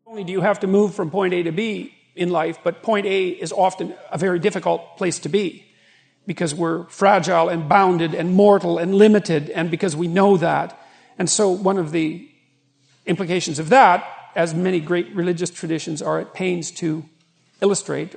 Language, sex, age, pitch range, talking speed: English, male, 50-69, 170-205 Hz, 190 wpm